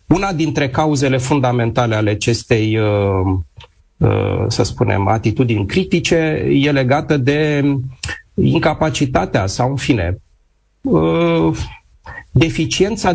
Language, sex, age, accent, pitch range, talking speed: Romanian, male, 30-49, native, 115-155 Hz, 80 wpm